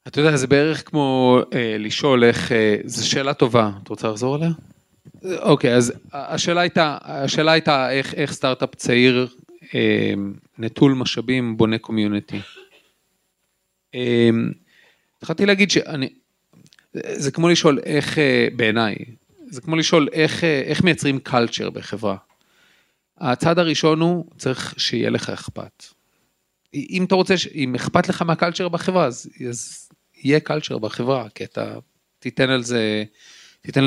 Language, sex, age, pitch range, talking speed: Hebrew, male, 40-59, 120-150 Hz, 125 wpm